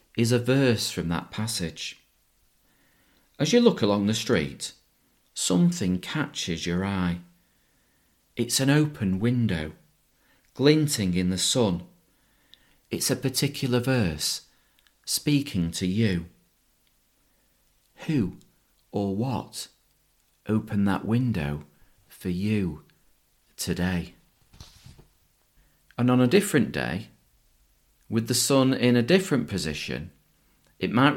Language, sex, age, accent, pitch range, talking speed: English, male, 40-59, British, 90-130 Hz, 105 wpm